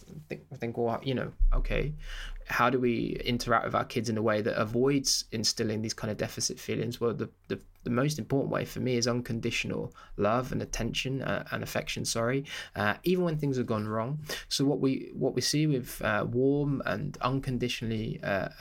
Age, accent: 20-39, British